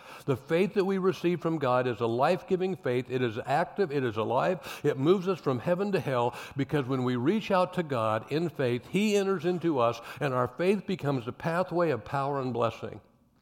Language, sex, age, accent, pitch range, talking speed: English, male, 60-79, American, 125-170 Hz, 210 wpm